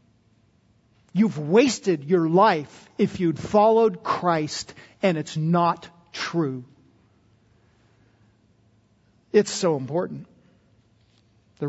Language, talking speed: English, 80 wpm